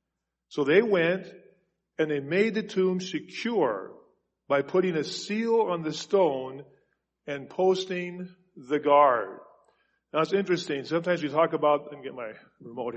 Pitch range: 150-195 Hz